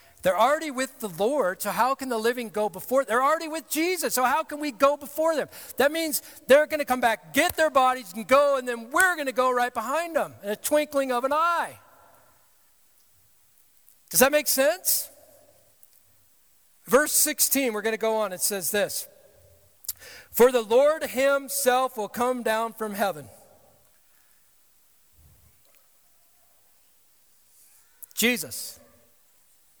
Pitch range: 230-290 Hz